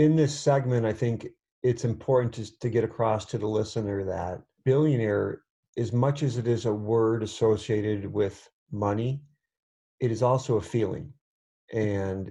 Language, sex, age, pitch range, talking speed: English, male, 50-69, 105-130 Hz, 155 wpm